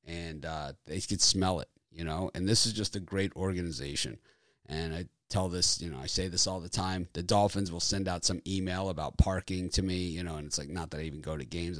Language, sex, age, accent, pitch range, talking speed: English, male, 30-49, American, 85-105 Hz, 255 wpm